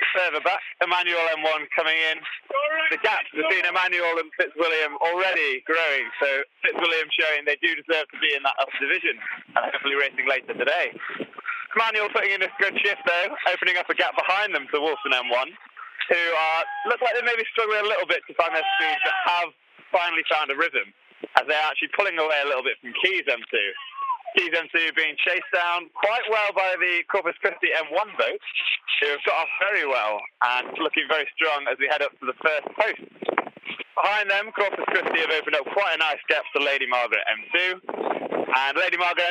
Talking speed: 195 wpm